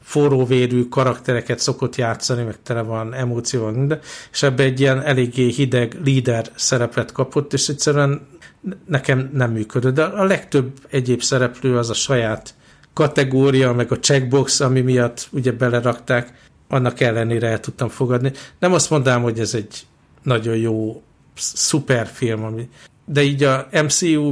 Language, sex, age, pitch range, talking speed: Hungarian, male, 60-79, 115-135 Hz, 145 wpm